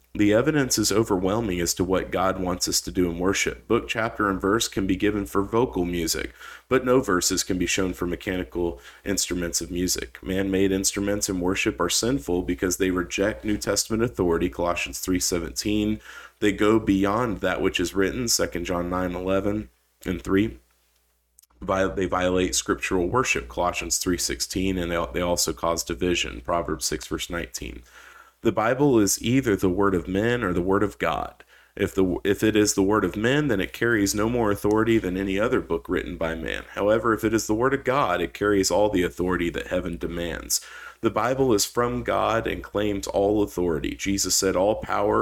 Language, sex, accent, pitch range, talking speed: English, male, American, 90-105 Hz, 185 wpm